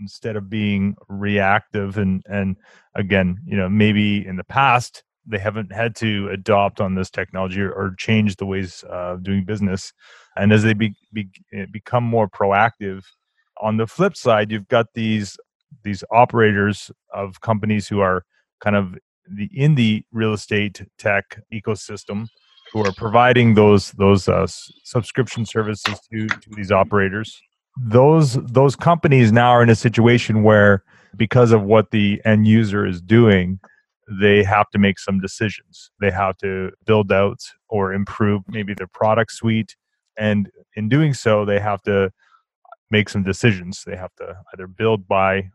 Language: English